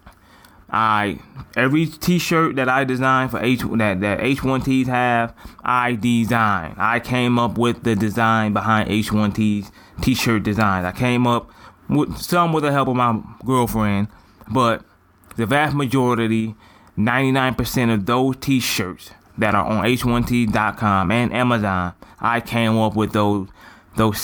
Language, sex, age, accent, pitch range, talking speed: English, male, 20-39, American, 100-125 Hz, 140 wpm